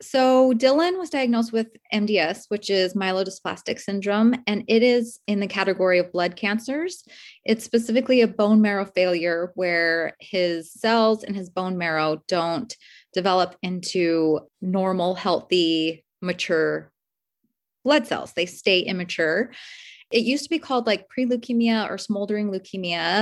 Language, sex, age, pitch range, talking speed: English, female, 20-39, 180-225 Hz, 135 wpm